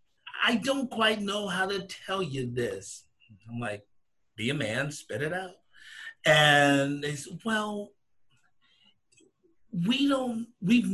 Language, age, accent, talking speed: English, 50-69, American, 130 wpm